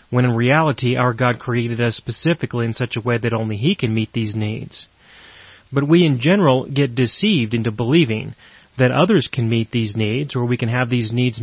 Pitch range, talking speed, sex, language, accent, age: 120-145 Hz, 205 wpm, male, English, American, 30-49